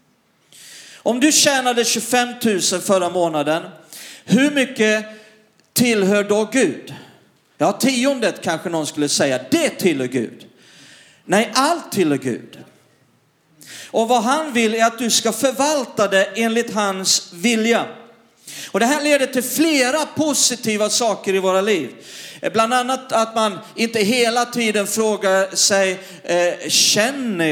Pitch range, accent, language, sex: 195-245 Hz, native, Swedish, male